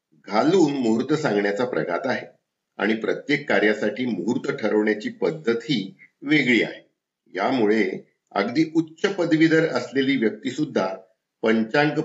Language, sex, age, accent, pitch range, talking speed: Marathi, male, 50-69, native, 110-160 Hz, 115 wpm